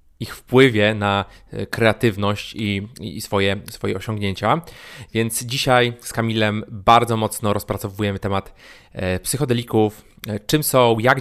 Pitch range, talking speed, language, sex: 105-120 Hz, 110 wpm, Polish, male